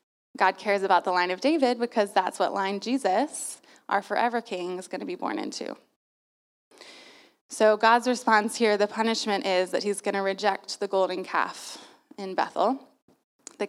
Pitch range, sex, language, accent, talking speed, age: 190-220 Hz, female, English, American, 170 wpm, 20-39